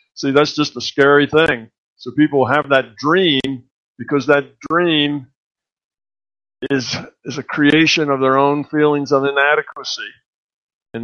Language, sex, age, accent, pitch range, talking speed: English, male, 50-69, American, 125-150 Hz, 135 wpm